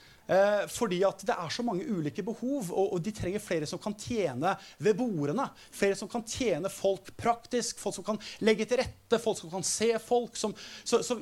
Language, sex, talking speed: English, male, 205 wpm